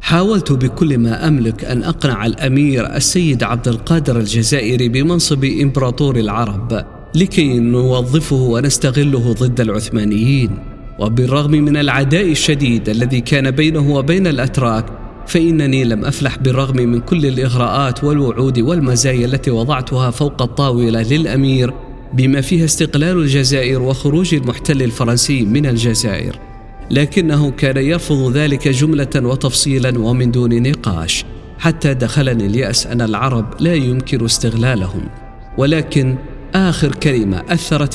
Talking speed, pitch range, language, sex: 115 wpm, 120-145 Hz, Arabic, male